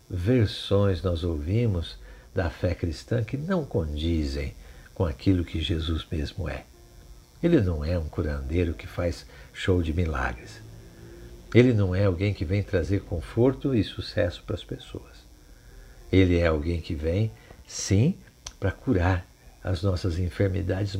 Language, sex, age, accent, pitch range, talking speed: Portuguese, male, 60-79, Brazilian, 85-110 Hz, 140 wpm